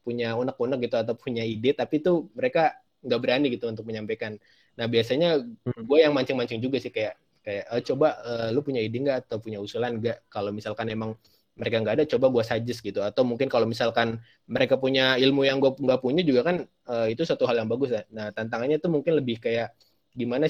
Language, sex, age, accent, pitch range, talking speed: Indonesian, male, 20-39, native, 115-135 Hz, 210 wpm